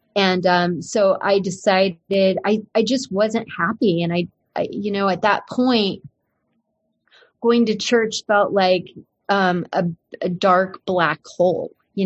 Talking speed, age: 150 wpm, 30-49